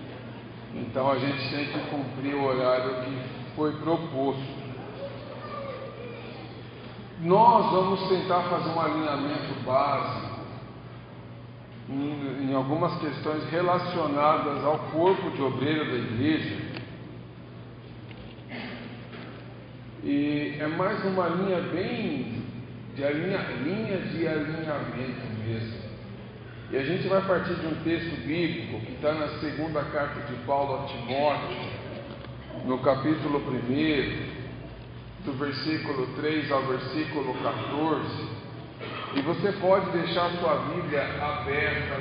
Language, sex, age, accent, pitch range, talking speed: English, male, 50-69, Brazilian, 135-160 Hz, 105 wpm